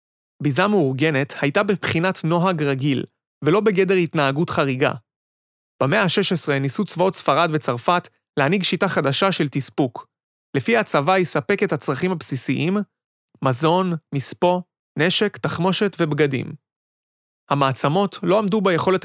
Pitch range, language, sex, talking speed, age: 140-185 Hz, Hebrew, male, 115 wpm, 30-49